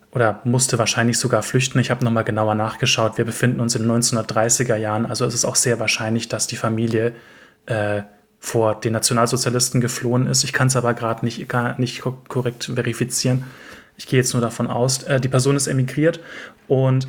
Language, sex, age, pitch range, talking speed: German, male, 30-49, 115-130 Hz, 185 wpm